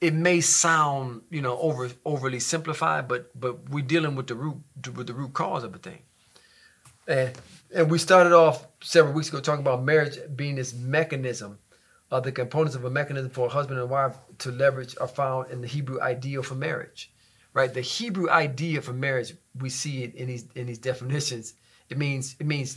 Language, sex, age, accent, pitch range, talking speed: English, male, 40-59, American, 130-165 Hz, 200 wpm